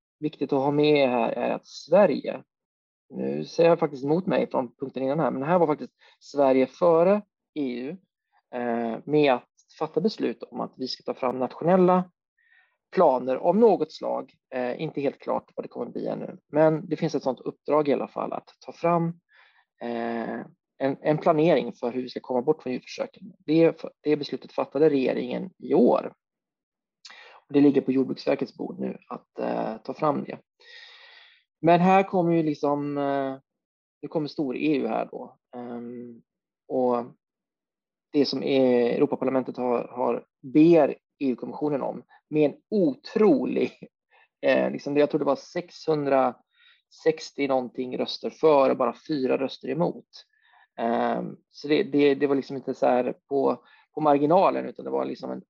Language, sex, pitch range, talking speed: Swedish, male, 130-165 Hz, 165 wpm